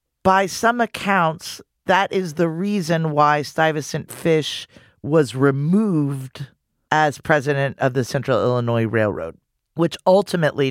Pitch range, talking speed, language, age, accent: 120-155 Hz, 120 wpm, English, 40-59, American